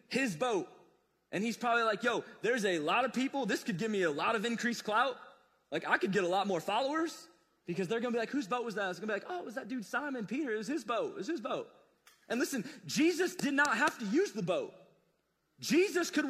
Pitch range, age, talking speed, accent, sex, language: 205-295 Hz, 30-49, 255 wpm, American, male, English